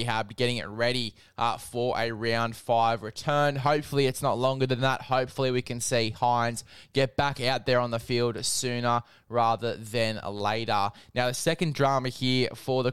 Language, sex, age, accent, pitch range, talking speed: English, male, 10-29, Australian, 120-140 Hz, 180 wpm